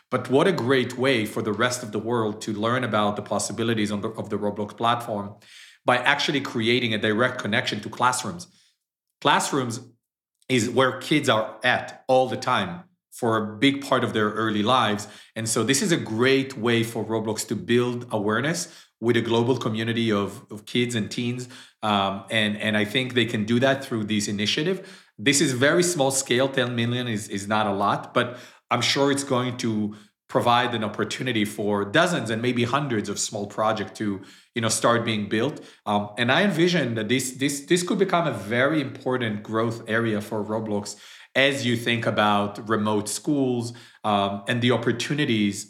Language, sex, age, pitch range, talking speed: English, male, 40-59, 105-130 Hz, 180 wpm